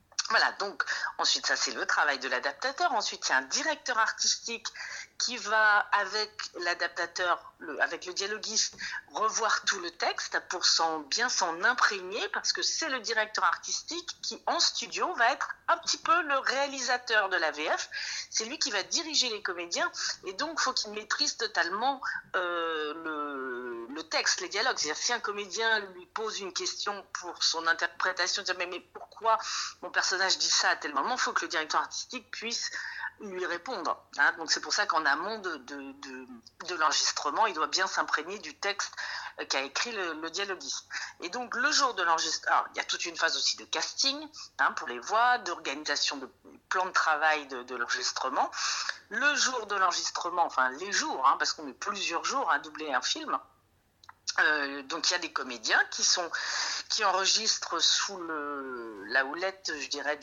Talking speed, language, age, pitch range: 185 wpm, French, 50-69, 170-285 Hz